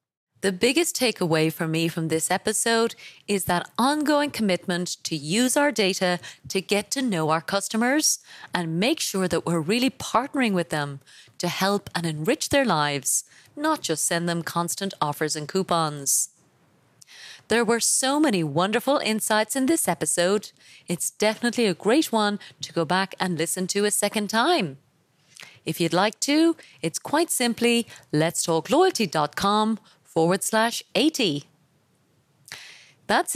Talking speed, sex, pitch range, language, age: 140 wpm, female, 165-230 Hz, English, 30-49